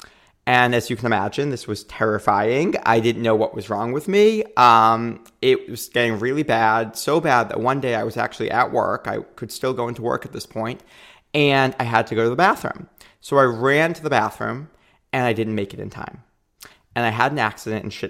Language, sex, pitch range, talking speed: English, male, 115-140 Hz, 230 wpm